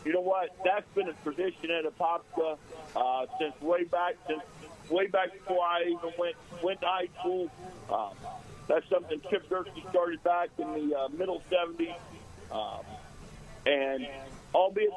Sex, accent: male, American